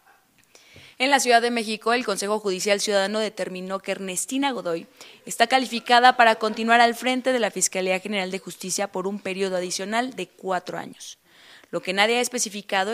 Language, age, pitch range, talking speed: Spanish, 20-39, 190-245 Hz, 170 wpm